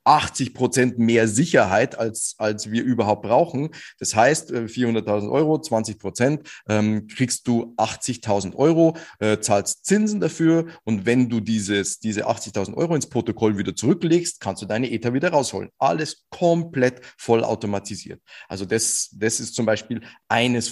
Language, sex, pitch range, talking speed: German, male, 105-130 Hz, 145 wpm